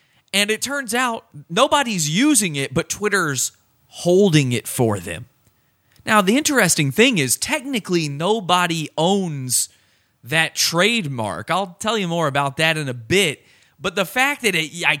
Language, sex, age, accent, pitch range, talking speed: English, male, 30-49, American, 135-195 Hz, 150 wpm